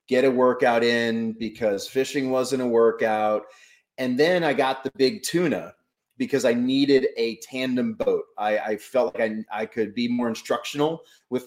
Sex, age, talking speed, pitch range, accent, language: male, 30-49, 175 wpm, 115-140 Hz, American, English